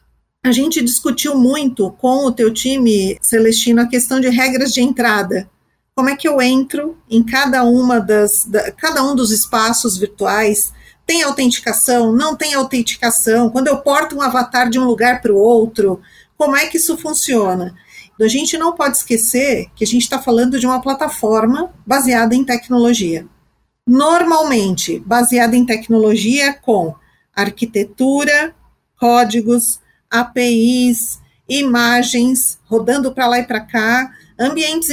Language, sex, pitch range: Portuguese, female, 235-275 Hz